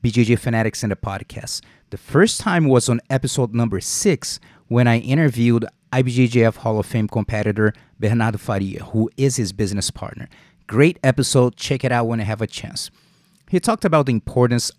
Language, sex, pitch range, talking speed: English, male, 115-165 Hz, 175 wpm